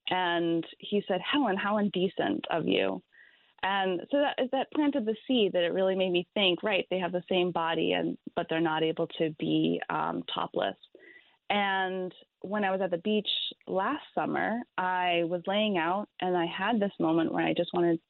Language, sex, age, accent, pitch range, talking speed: English, female, 20-39, American, 170-200 Hz, 200 wpm